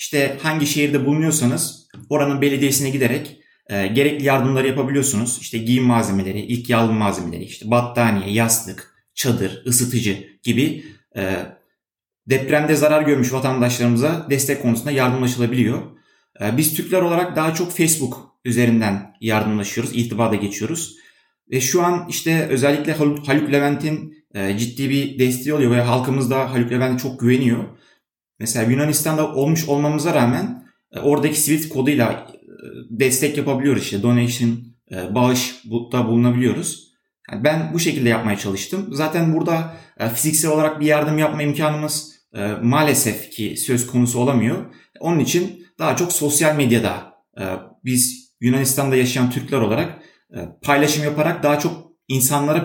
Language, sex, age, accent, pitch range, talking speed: Turkish, male, 30-49, native, 120-150 Hz, 125 wpm